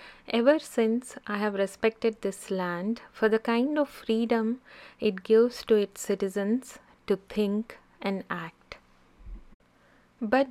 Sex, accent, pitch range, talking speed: female, native, 195-245 Hz, 125 wpm